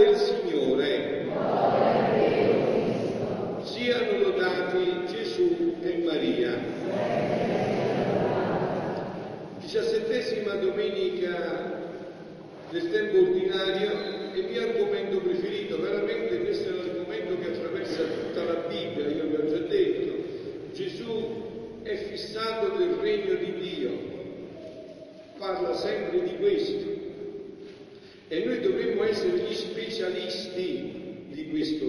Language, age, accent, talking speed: Italian, 50-69, native, 95 wpm